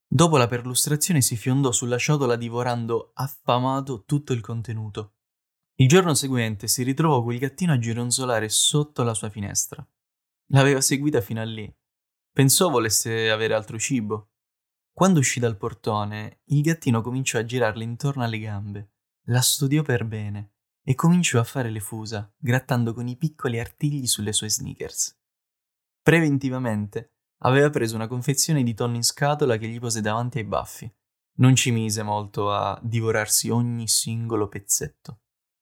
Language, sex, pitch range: Italian, male, 110-135 Hz